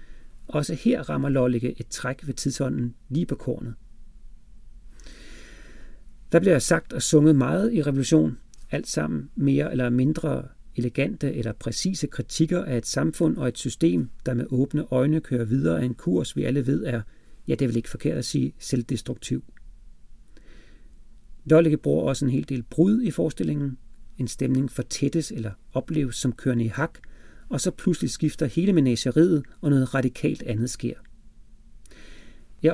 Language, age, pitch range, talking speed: Danish, 40-59, 120-155 Hz, 160 wpm